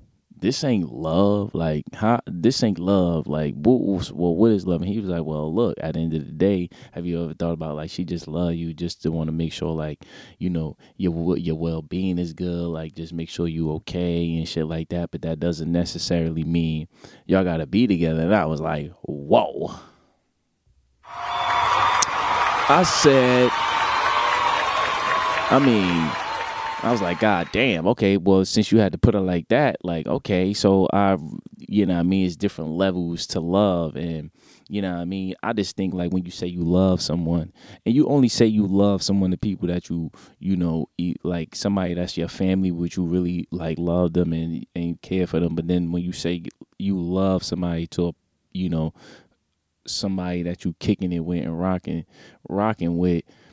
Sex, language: male, English